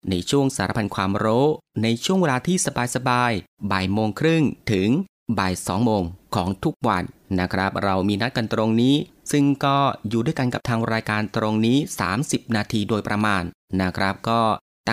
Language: Thai